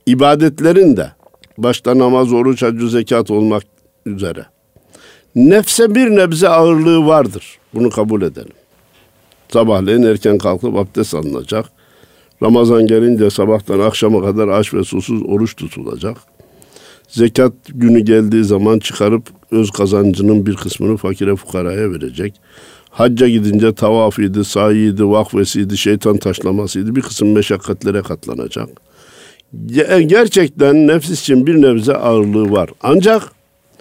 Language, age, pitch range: Turkish, 60-79, 105-135 Hz